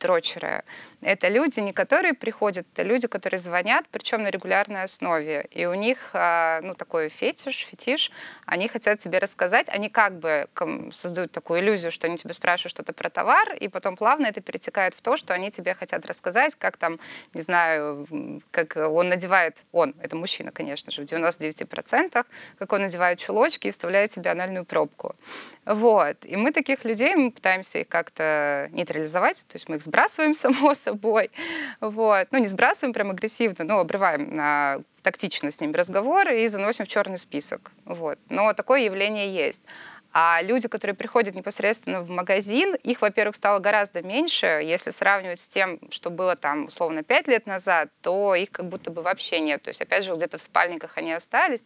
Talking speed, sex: 175 wpm, female